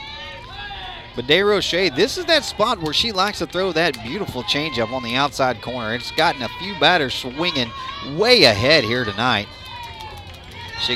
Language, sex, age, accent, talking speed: English, male, 30-49, American, 160 wpm